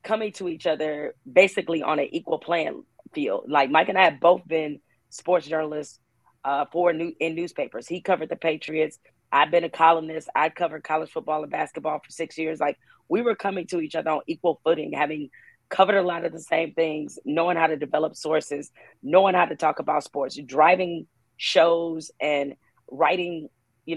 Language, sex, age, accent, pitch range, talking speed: English, female, 40-59, American, 150-175 Hz, 185 wpm